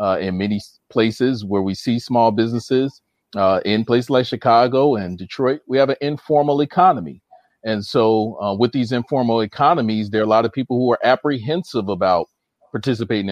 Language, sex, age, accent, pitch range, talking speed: English, male, 40-59, American, 100-120 Hz, 175 wpm